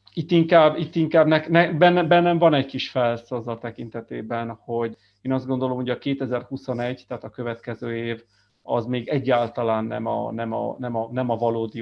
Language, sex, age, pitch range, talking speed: Hungarian, male, 30-49, 115-130 Hz, 200 wpm